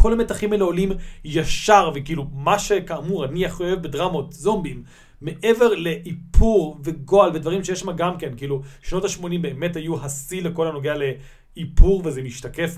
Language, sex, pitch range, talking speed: Hebrew, male, 150-185 Hz, 150 wpm